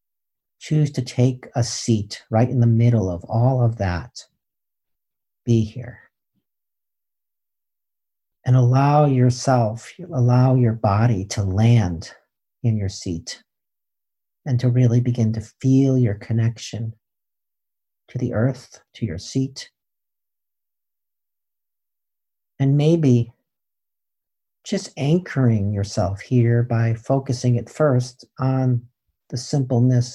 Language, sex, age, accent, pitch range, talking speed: English, male, 50-69, American, 115-130 Hz, 105 wpm